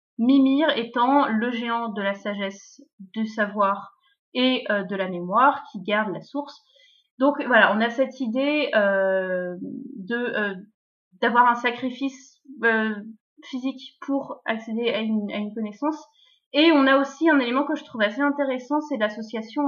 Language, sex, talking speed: French, female, 160 wpm